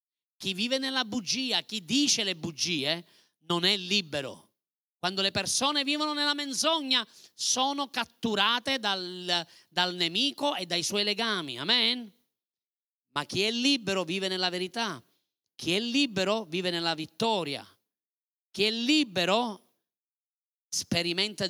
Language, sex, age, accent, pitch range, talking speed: Italian, male, 40-59, native, 180-255 Hz, 125 wpm